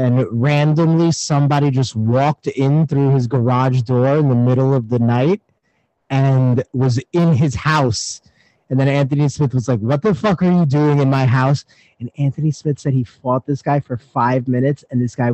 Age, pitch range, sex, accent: 30-49, 120-150 Hz, male, American